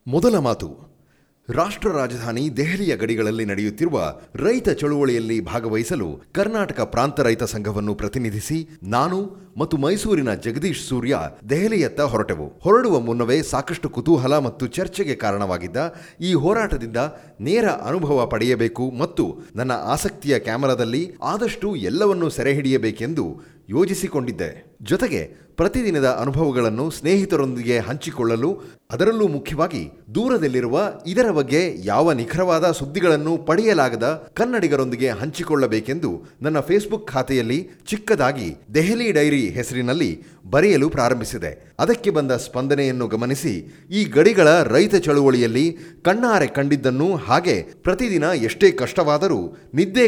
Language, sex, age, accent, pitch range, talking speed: Kannada, male, 30-49, native, 130-180 Hz, 100 wpm